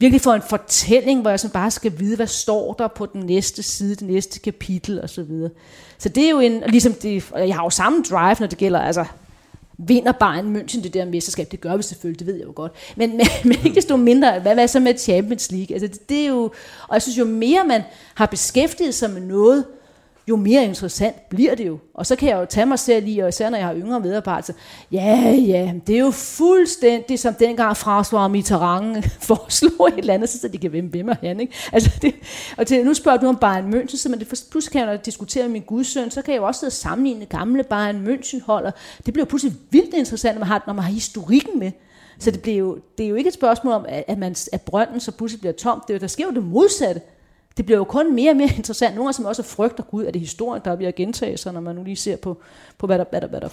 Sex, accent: female, native